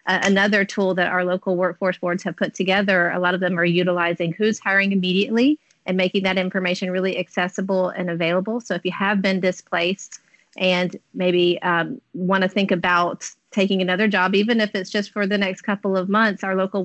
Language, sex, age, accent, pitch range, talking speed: English, female, 30-49, American, 180-200 Hz, 190 wpm